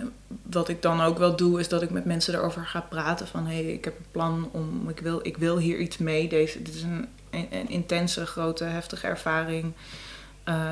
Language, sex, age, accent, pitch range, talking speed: Dutch, female, 20-39, Dutch, 155-170 Hz, 215 wpm